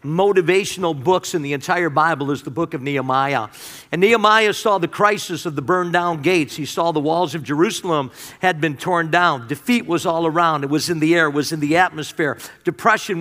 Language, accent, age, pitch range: English, American, 50-69, 175-225 Hz